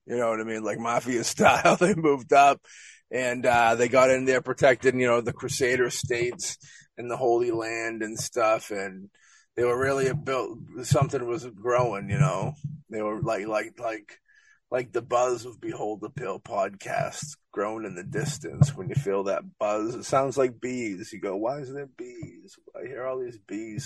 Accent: American